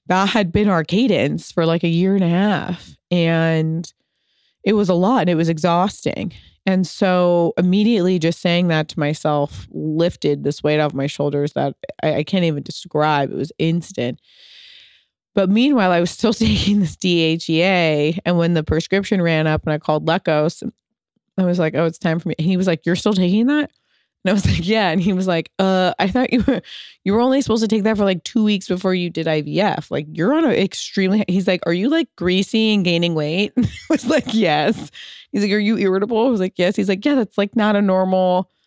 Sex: female